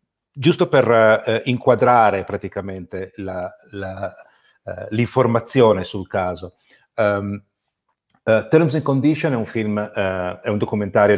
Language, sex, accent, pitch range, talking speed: Italian, male, native, 95-120 Hz, 125 wpm